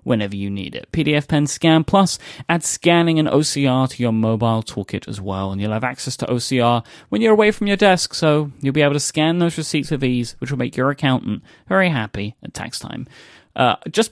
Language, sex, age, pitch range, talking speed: English, male, 30-49, 110-150 Hz, 220 wpm